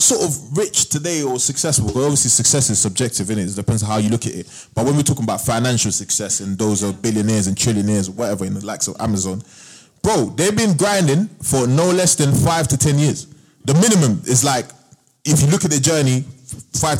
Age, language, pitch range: 20-39, English, 115-155 Hz